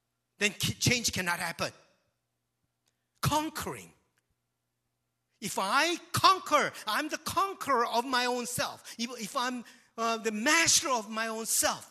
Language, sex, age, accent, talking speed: English, male, 50-69, Japanese, 125 wpm